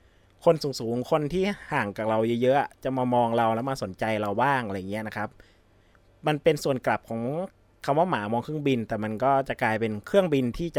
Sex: male